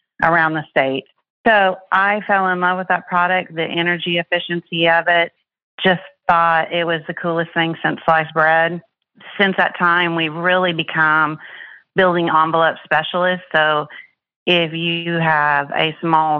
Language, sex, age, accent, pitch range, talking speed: English, female, 40-59, American, 155-170 Hz, 150 wpm